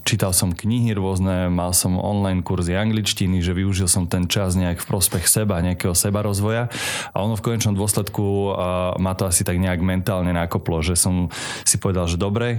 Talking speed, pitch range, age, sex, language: 190 wpm, 90-105 Hz, 20-39, male, Slovak